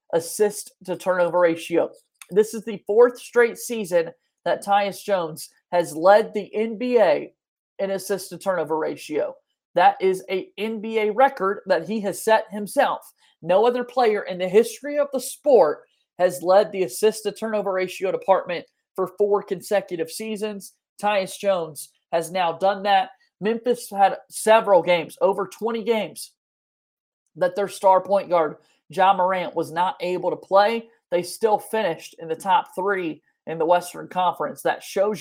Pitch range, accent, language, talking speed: 175-215 Hz, American, English, 145 wpm